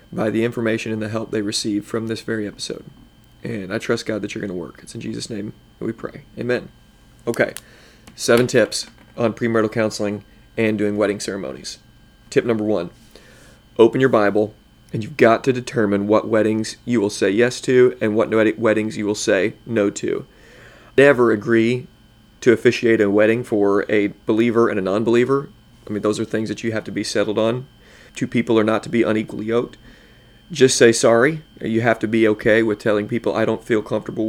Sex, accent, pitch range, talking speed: male, American, 105-115 Hz, 195 wpm